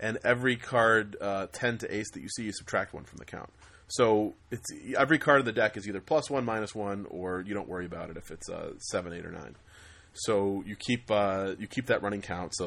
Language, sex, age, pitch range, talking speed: English, male, 30-49, 90-105 Hz, 245 wpm